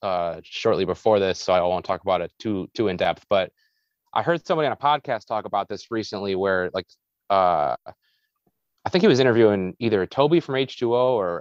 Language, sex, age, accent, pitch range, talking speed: English, male, 30-49, American, 95-120 Hz, 200 wpm